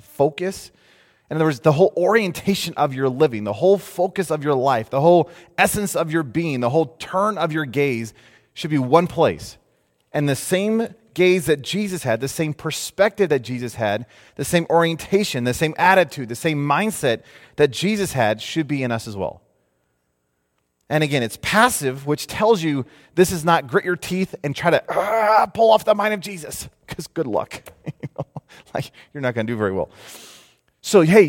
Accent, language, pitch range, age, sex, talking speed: American, English, 125-180 Hz, 30-49, male, 190 wpm